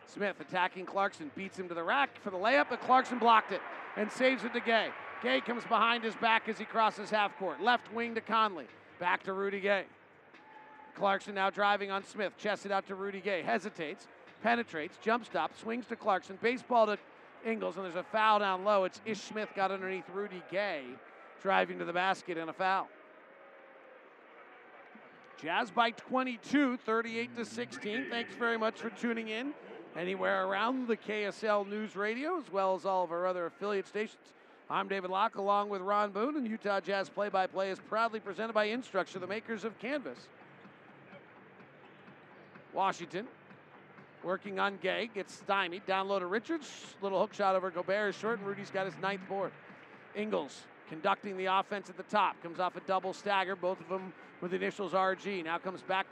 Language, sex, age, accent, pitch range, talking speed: English, male, 50-69, American, 190-225 Hz, 180 wpm